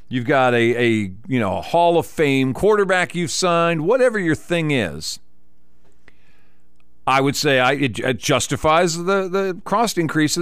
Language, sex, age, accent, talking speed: English, male, 50-69, American, 165 wpm